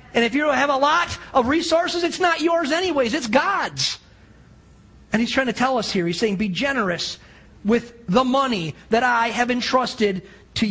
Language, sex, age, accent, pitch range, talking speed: English, male, 40-59, American, 215-290 Hz, 185 wpm